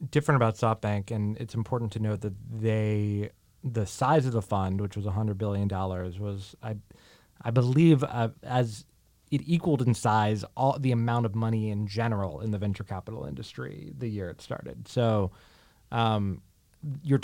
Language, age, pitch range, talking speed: English, 20-39, 105-125 Hz, 170 wpm